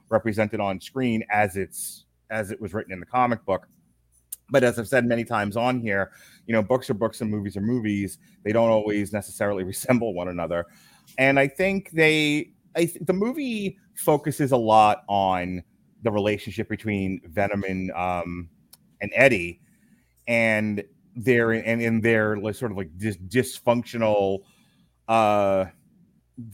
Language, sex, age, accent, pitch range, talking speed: English, male, 30-49, American, 100-125 Hz, 140 wpm